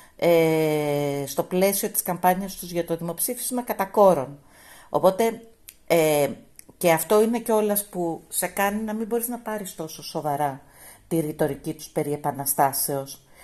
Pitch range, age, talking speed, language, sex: 170-230 Hz, 50-69, 130 wpm, Greek, female